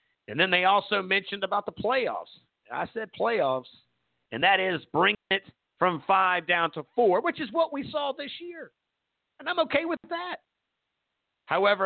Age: 50-69